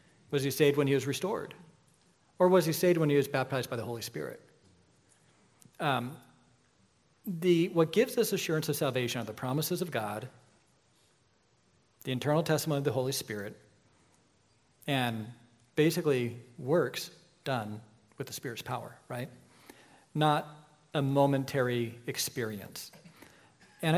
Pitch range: 125-160 Hz